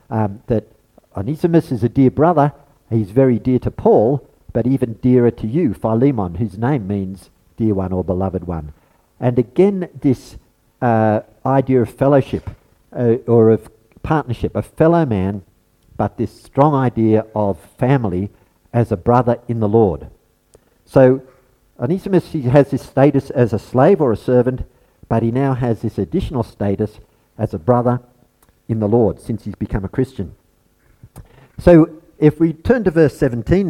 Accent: Australian